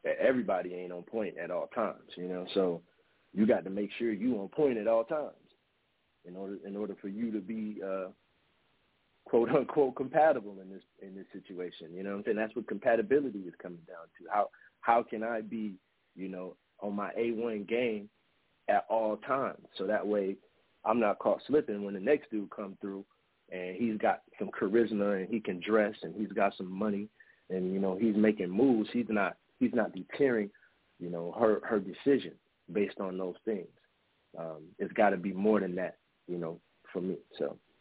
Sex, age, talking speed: male, 40-59, 195 wpm